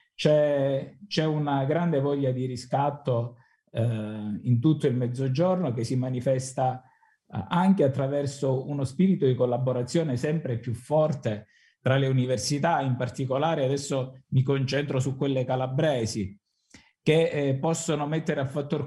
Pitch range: 125-145 Hz